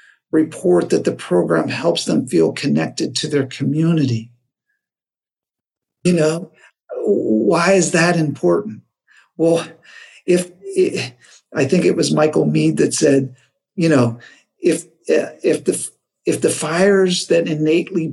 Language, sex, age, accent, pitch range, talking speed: English, male, 50-69, American, 145-190 Hz, 125 wpm